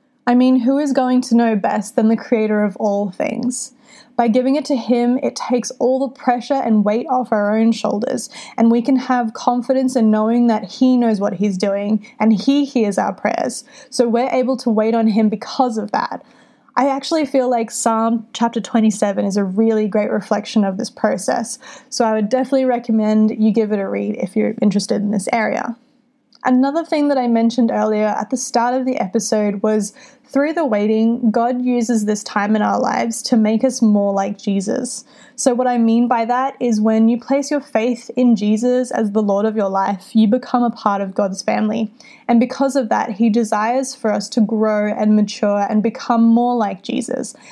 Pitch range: 215-255 Hz